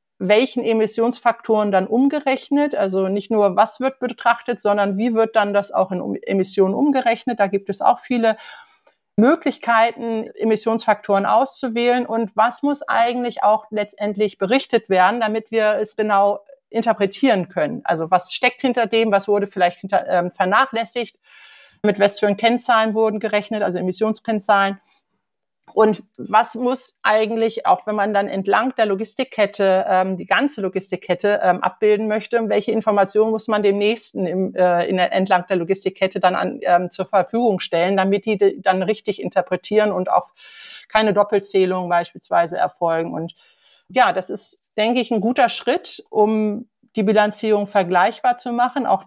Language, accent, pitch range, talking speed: German, German, 195-235 Hz, 150 wpm